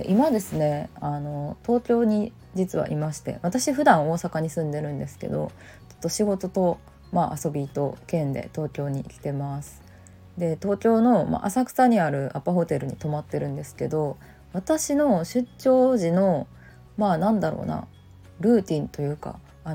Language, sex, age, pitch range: Japanese, female, 20-39, 140-190 Hz